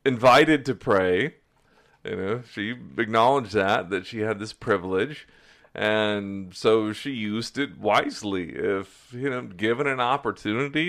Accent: American